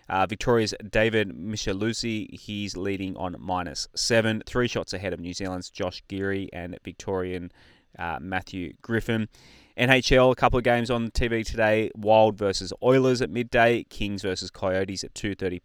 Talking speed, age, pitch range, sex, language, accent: 155 wpm, 20-39, 95-120 Hz, male, English, Australian